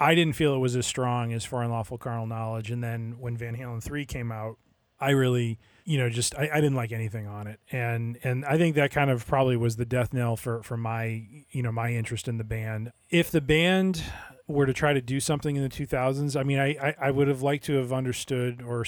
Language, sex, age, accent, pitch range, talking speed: English, male, 30-49, American, 115-135 Hz, 250 wpm